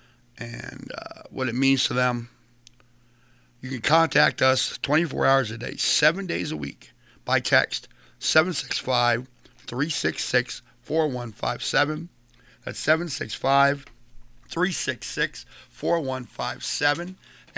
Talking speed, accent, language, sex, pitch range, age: 80 wpm, American, English, male, 120-140 Hz, 60-79